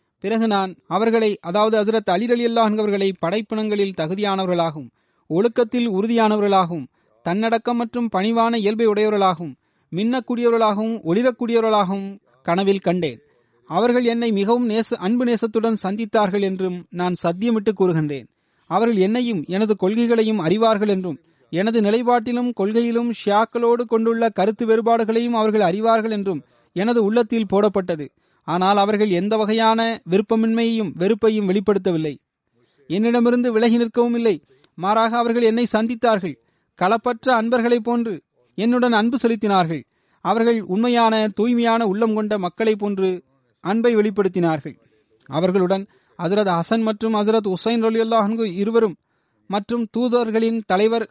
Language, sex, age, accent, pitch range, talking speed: Tamil, male, 30-49, native, 185-230 Hz, 110 wpm